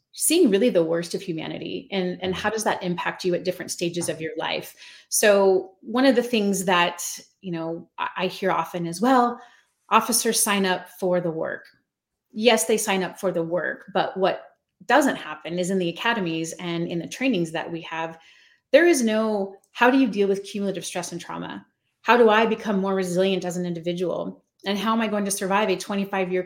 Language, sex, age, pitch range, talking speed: English, female, 30-49, 175-215 Hz, 205 wpm